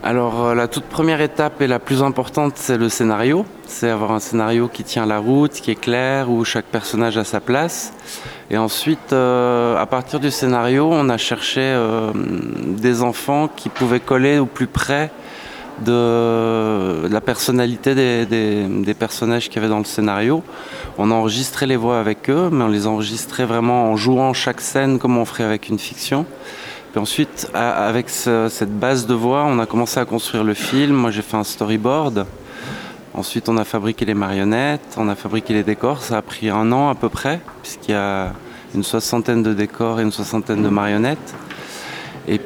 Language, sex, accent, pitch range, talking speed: English, male, French, 110-130 Hz, 190 wpm